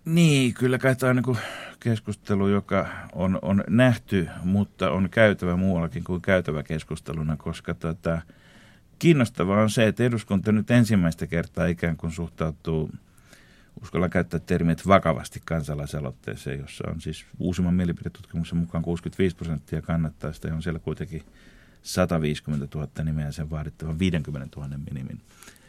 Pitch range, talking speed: 80-100 Hz, 135 wpm